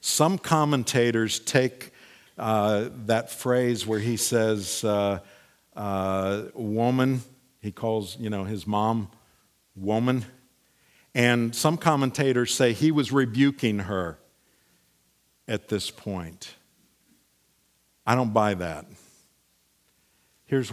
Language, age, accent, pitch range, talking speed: English, 50-69, American, 100-130 Hz, 100 wpm